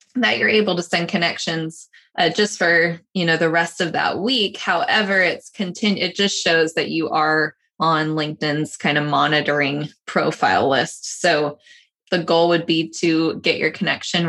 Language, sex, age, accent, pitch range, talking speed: English, female, 20-39, American, 160-195 Hz, 170 wpm